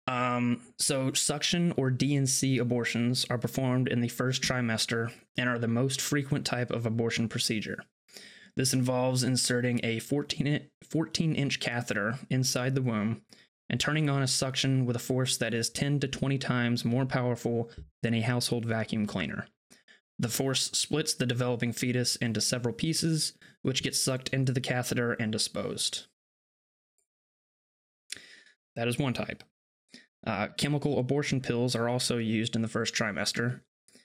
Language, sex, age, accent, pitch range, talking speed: English, male, 20-39, American, 115-130 Hz, 150 wpm